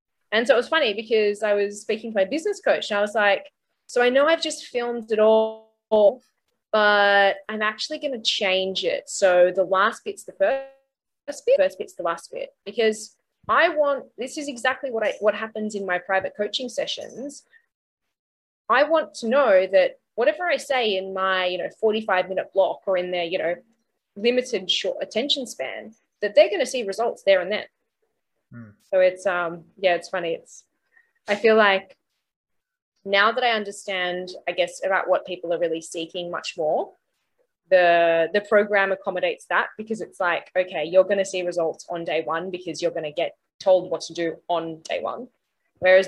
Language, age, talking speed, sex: English, 20-39, 190 wpm, female